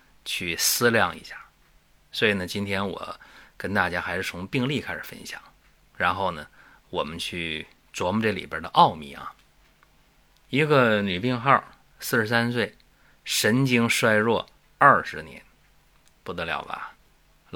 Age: 30-49